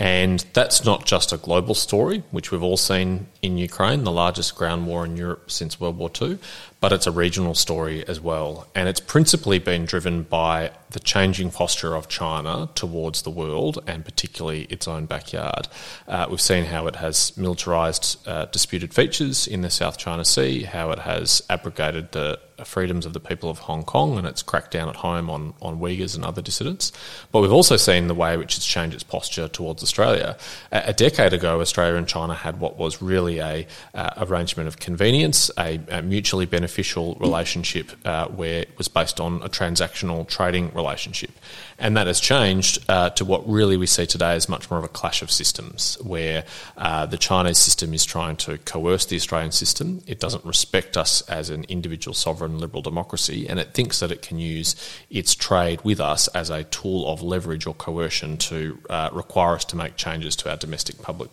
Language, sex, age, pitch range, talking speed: English, male, 30-49, 80-95 Hz, 200 wpm